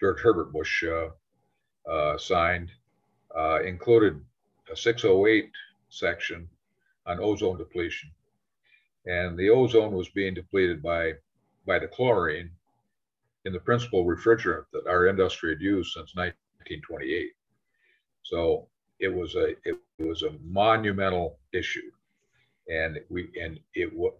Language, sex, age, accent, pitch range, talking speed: English, male, 50-69, American, 90-115 Hz, 120 wpm